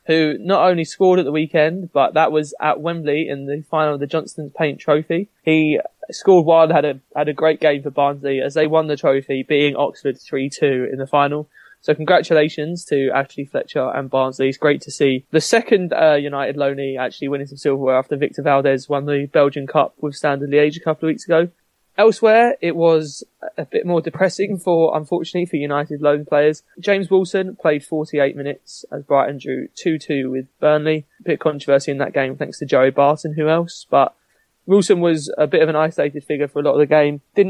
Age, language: 20-39, English